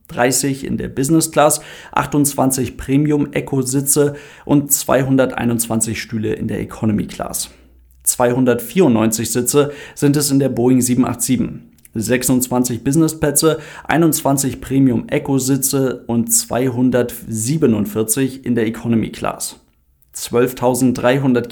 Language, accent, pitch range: German, German, 120-140 Hz